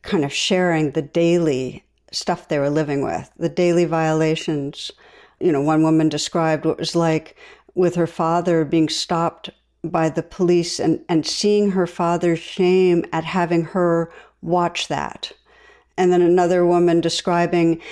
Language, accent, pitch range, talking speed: English, American, 165-180 Hz, 155 wpm